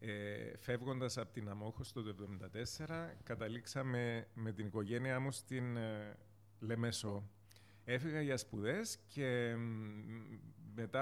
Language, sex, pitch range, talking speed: Greek, male, 110-135 Hz, 115 wpm